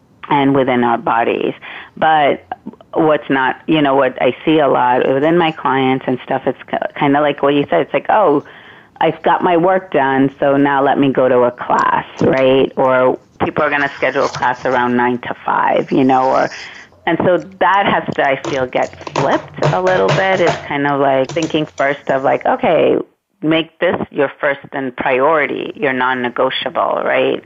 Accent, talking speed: American, 190 wpm